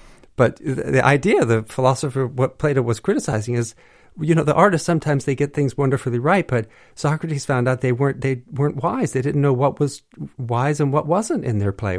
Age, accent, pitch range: 50-69, American, 110-150 Hz